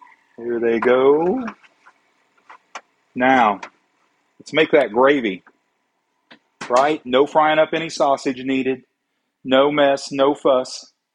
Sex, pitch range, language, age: male, 130-170 Hz, English, 40-59